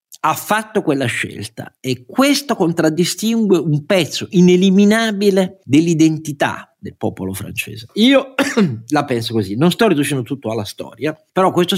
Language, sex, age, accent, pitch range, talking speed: Italian, male, 50-69, native, 105-150 Hz, 135 wpm